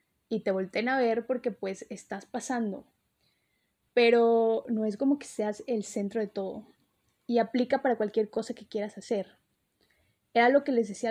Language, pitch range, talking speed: Spanish, 210-245 Hz, 175 wpm